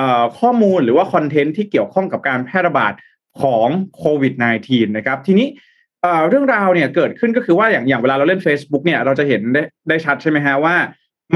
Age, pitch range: 20-39, 140-185 Hz